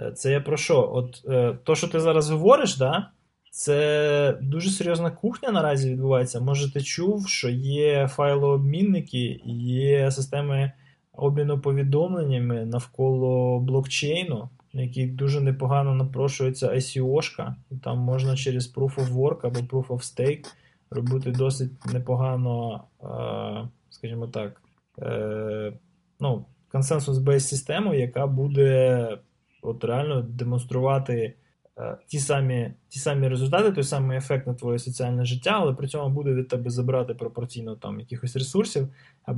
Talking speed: 125 wpm